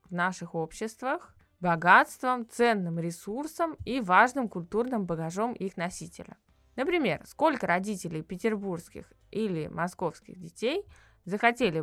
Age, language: 20-39, Russian